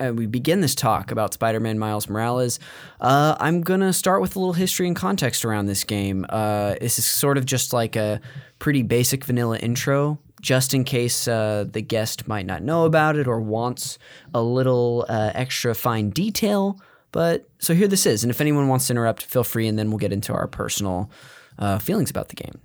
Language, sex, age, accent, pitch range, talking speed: English, male, 10-29, American, 105-140 Hz, 210 wpm